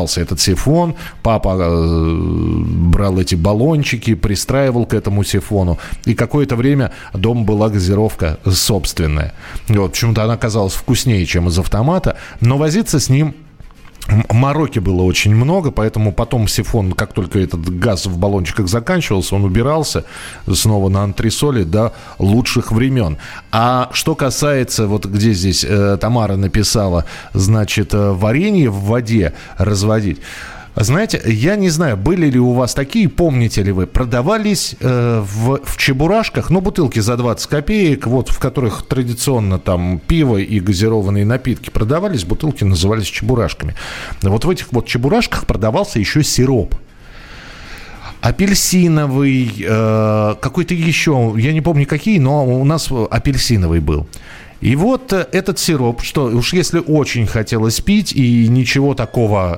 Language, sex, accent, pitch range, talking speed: Russian, male, native, 100-135 Hz, 135 wpm